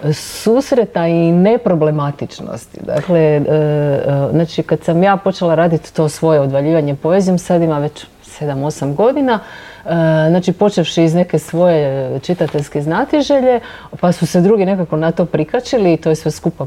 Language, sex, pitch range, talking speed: Croatian, female, 150-200 Hz, 140 wpm